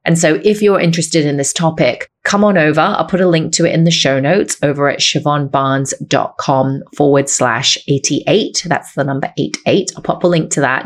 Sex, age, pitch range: female, 30-49, 145-170 Hz